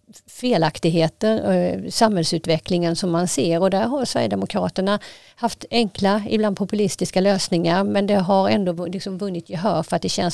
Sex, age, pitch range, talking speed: female, 50-69, 175-215 Hz, 140 wpm